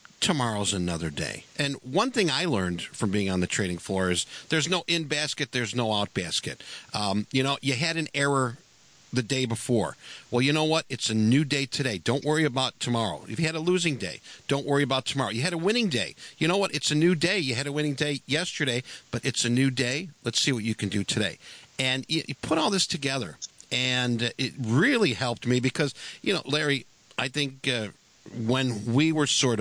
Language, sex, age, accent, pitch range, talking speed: English, male, 50-69, American, 110-145 Hz, 220 wpm